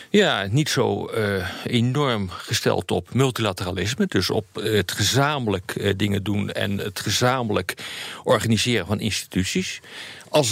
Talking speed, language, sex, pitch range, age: 130 wpm, Dutch, male, 100-125 Hz, 50-69